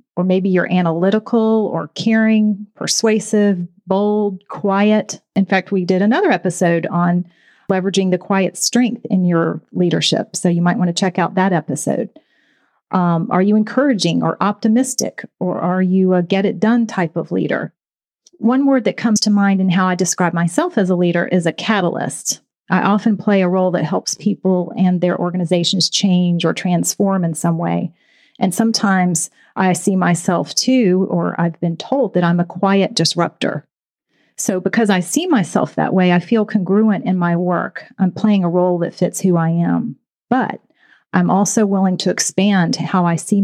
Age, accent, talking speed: 40-59, American, 175 wpm